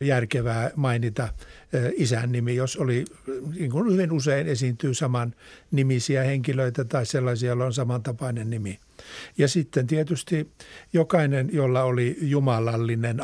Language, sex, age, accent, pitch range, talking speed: Finnish, male, 60-79, native, 120-145 Hz, 120 wpm